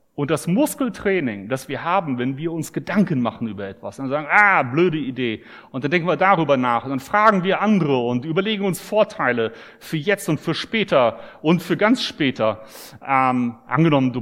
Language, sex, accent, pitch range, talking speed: German, male, German, 135-190 Hz, 190 wpm